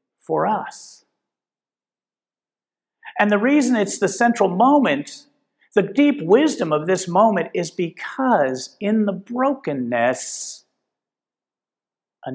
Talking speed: 100 wpm